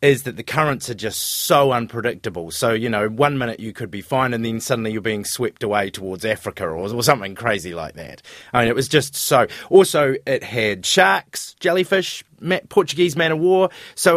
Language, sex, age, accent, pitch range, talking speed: English, male, 30-49, Australian, 115-175 Hz, 195 wpm